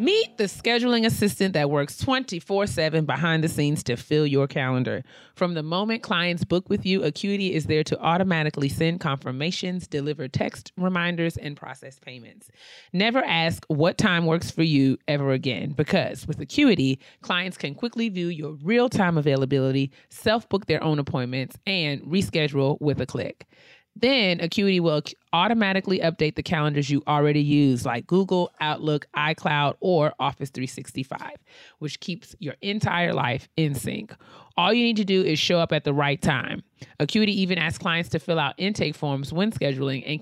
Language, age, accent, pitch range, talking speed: English, 30-49, American, 145-185 Hz, 165 wpm